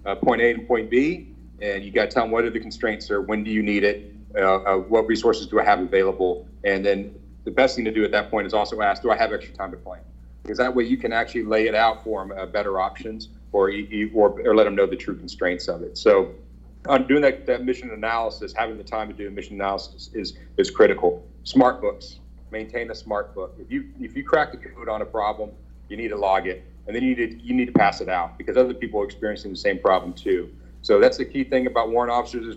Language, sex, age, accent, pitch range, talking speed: English, male, 40-59, American, 100-125 Hz, 260 wpm